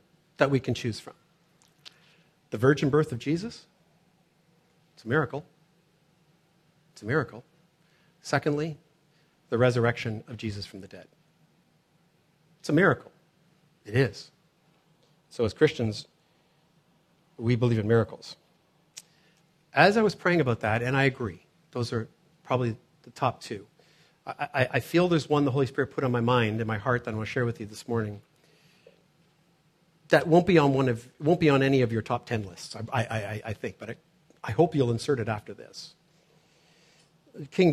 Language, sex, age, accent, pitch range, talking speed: English, male, 50-69, American, 120-160 Hz, 170 wpm